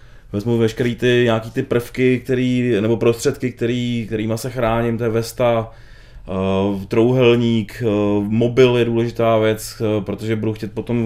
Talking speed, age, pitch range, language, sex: 145 wpm, 20-39, 105-120 Hz, Czech, male